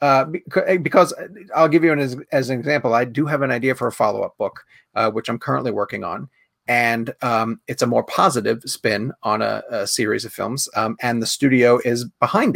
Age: 30-49